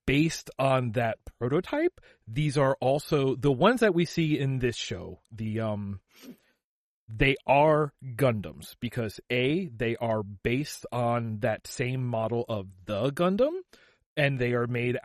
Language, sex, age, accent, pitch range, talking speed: English, male, 30-49, American, 110-135 Hz, 145 wpm